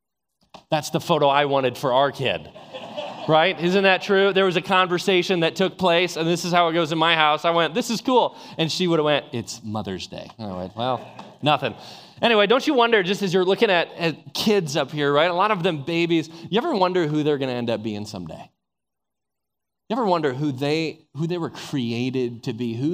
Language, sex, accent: English, male, American